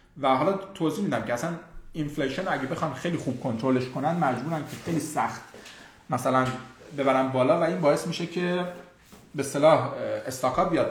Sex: male